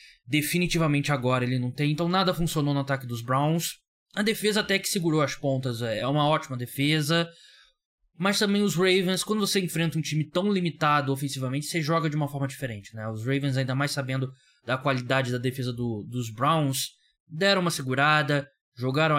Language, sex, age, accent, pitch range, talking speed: Portuguese, male, 20-39, Brazilian, 125-150 Hz, 180 wpm